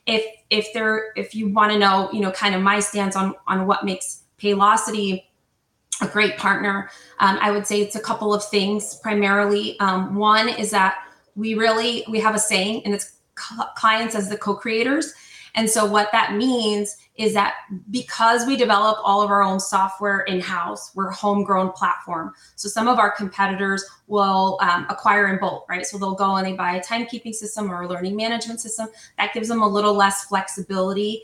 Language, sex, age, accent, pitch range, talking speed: English, female, 20-39, American, 190-215 Hz, 195 wpm